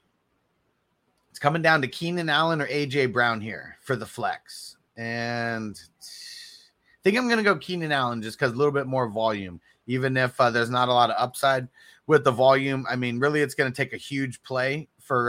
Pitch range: 115-150 Hz